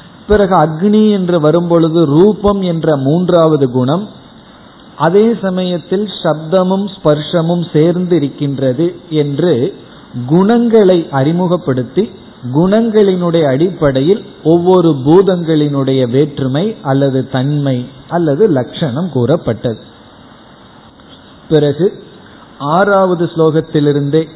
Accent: native